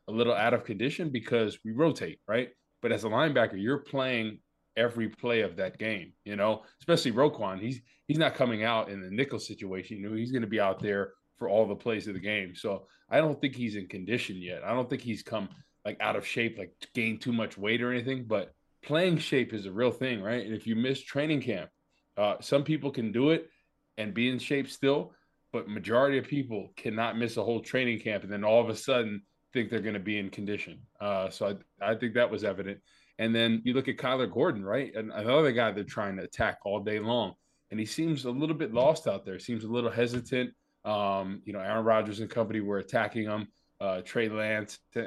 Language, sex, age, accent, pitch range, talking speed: English, male, 20-39, American, 105-125 Hz, 230 wpm